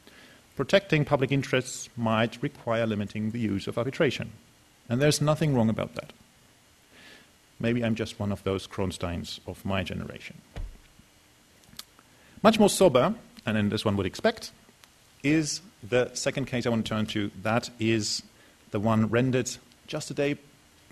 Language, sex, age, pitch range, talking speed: English, male, 40-59, 110-155 Hz, 145 wpm